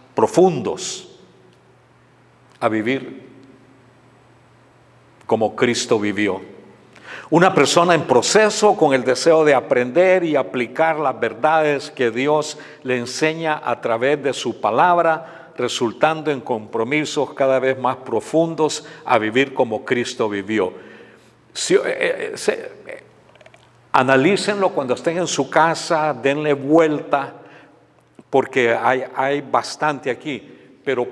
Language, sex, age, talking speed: Spanish, male, 50-69, 105 wpm